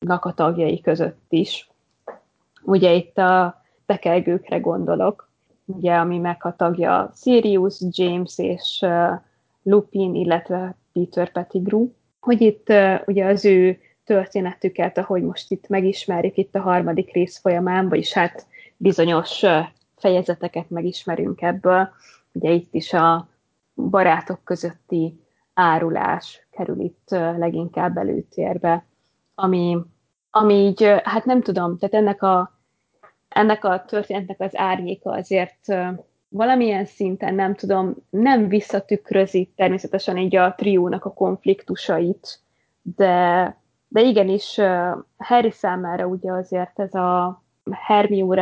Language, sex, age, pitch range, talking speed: Hungarian, female, 20-39, 175-195 Hz, 110 wpm